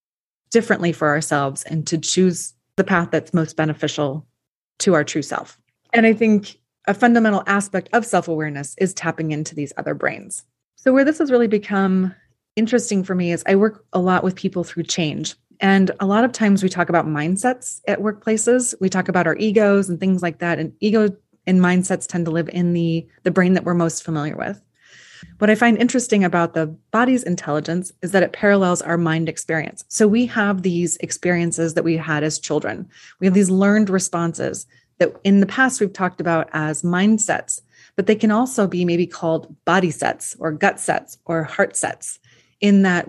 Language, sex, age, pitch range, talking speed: English, female, 30-49, 165-210 Hz, 195 wpm